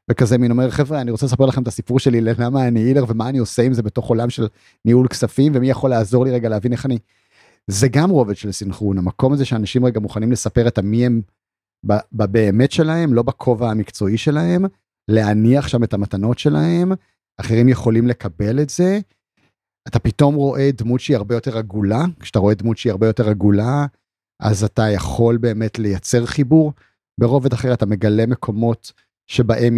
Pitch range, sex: 110-140 Hz, male